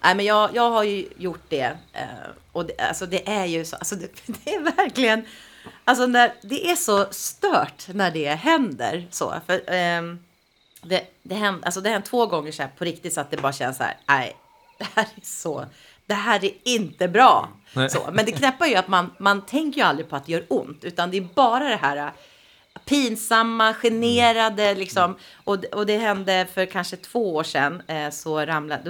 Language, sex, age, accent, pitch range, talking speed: English, female, 30-49, Swedish, 160-225 Hz, 210 wpm